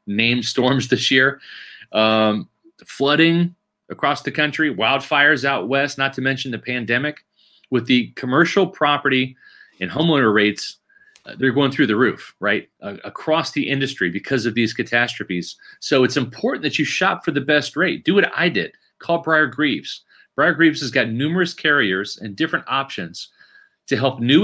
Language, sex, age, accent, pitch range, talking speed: English, male, 30-49, American, 125-160 Hz, 165 wpm